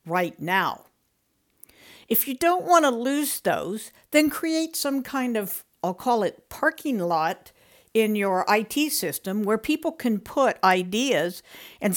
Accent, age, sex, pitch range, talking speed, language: American, 60-79, female, 180-260 Hz, 145 wpm, English